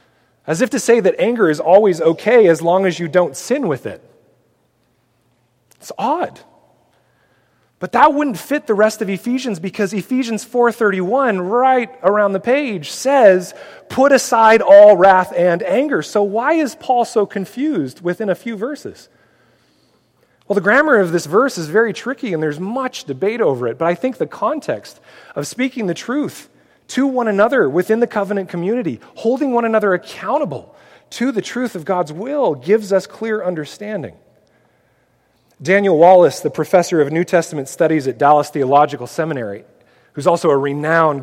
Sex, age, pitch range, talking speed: male, 30-49, 150-220 Hz, 165 wpm